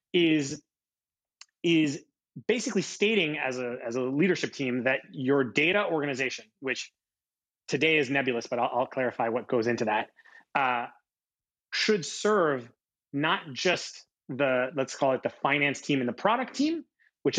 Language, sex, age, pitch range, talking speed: English, male, 30-49, 130-185 Hz, 150 wpm